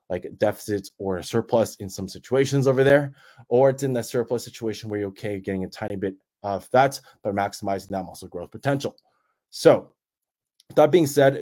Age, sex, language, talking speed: 20-39, male, English, 190 wpm